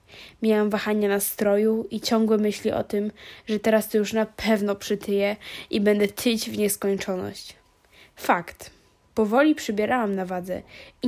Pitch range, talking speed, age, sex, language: 205-225 Hz, 140 wpm, 10-29, female, Polish